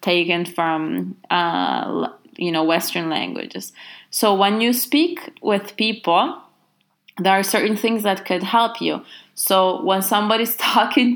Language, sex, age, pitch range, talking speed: English, female, 20-39, 175-205 Hz, 135 wpm